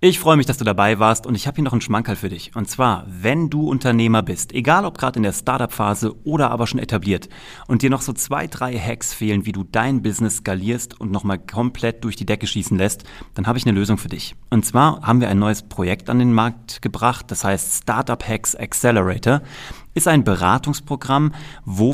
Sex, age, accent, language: male, 30-49, German, German